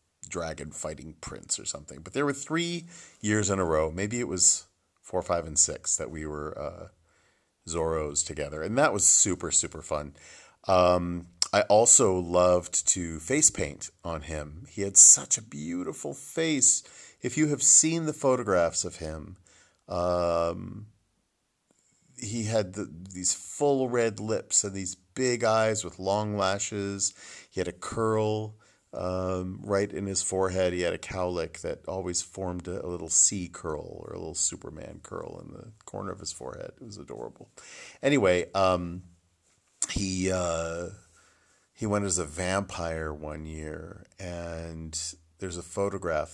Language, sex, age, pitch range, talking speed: English, male, 40-59, 85-105 Hz, 155 wpm